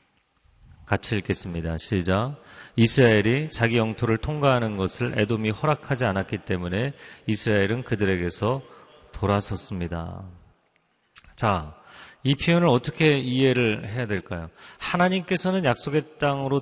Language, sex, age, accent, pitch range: Korean, male, 40-59, native, 105-145 Hz